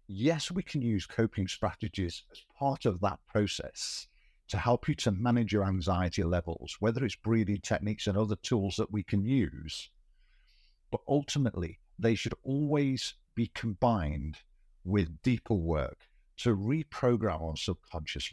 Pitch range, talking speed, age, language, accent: 85-115 Hz, 145 wpm, 50-69, English, British